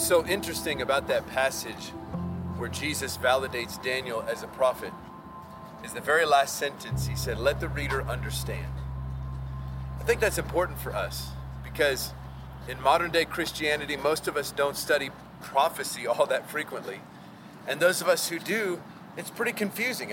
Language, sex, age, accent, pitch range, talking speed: English, male, 40-59, American, 130-180 Hz, 160 wpm